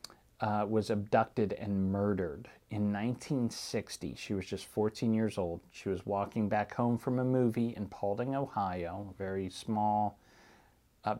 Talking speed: 150 wpm